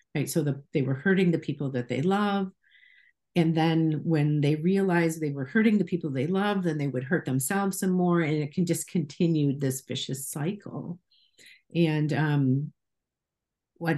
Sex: female